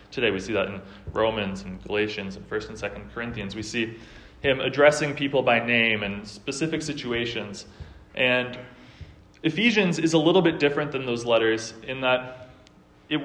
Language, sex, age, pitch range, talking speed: English, male, 20-39, 110-135 Hz, 165 wpm